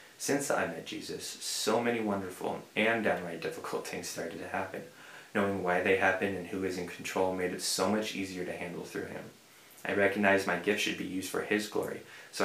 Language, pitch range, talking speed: English, 90-100 Hz, 205 wpm